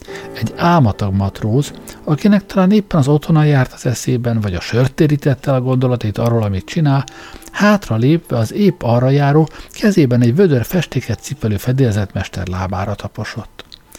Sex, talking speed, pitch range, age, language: male, 135 wpm, 105-145 Hz, 60-79, Hungarian